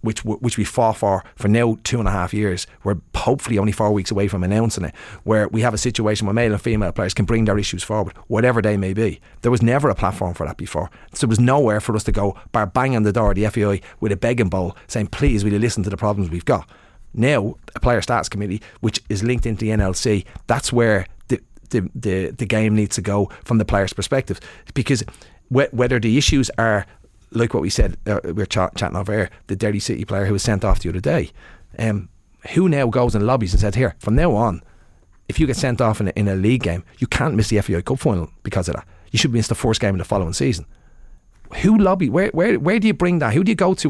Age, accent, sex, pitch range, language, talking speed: 30-49, Irish, male, 100-120 Hz, English, 255 wpm